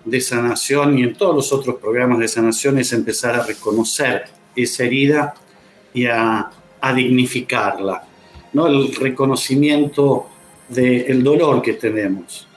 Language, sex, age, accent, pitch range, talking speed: Spanish, male, 50-69, Argentinian, 120-150 Hz, 135 wpm